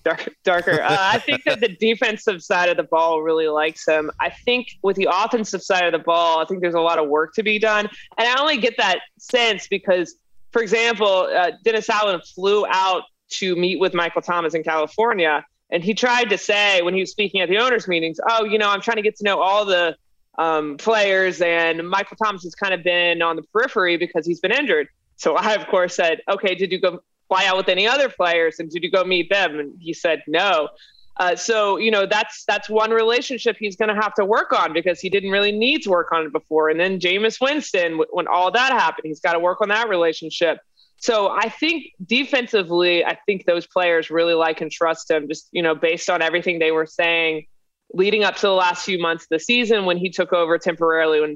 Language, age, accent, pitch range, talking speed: English, 20-39, American, 165-215 Hz, 230 wpm